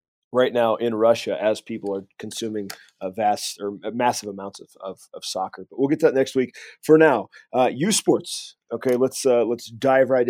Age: 30-49